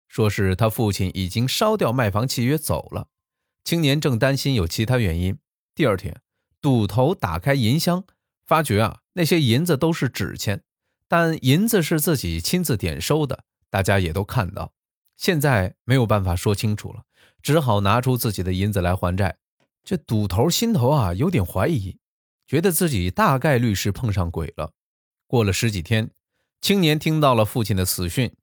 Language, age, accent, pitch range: Chinese, 20-39, native, 100-145 Hz